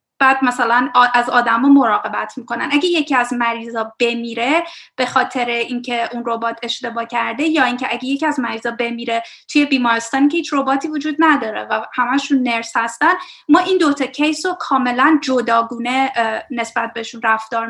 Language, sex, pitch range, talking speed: Persian, female, 240-310 Hz, 155 wpm